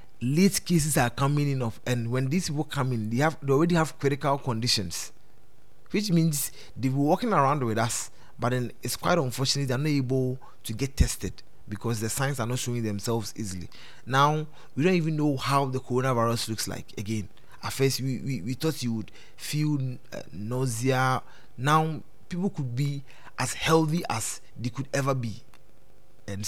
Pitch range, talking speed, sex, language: 115-145 Hz, 180 wpm, male, English